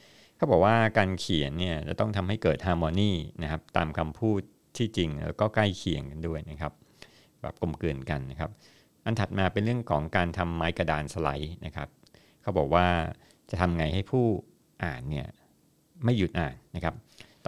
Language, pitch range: Thai, 80-105 Hz